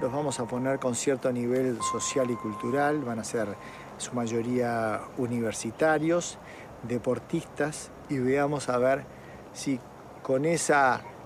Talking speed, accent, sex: 130 wpm, Argentinian, male